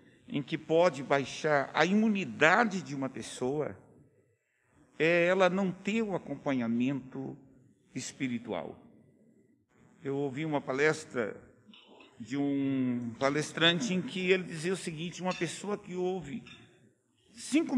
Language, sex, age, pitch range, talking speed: Portuguese, male, 60-79, 140-195 Hz, 115 wpm